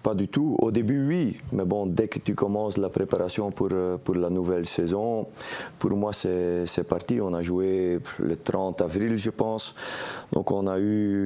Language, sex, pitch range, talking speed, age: French, male, 95-110 Hz, 195 wpm, 30-49